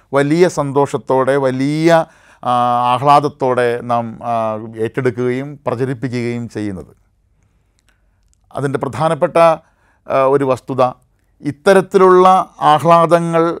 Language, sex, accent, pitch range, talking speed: Malayalam, male, native, 120-155 Hz, 60 wpm